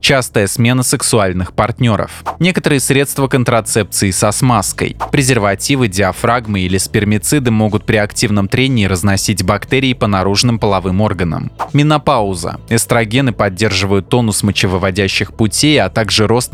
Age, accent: 20-39, native